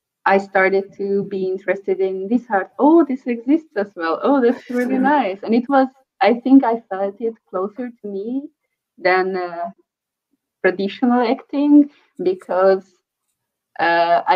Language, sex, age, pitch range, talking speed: English, female, 20-39, 190-240 Hz, 140 wpm